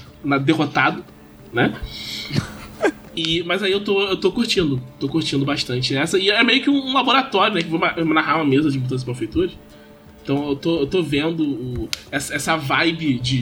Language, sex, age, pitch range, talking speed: Portuguese, male, 20-39, 130-205 Hz, 205 wpm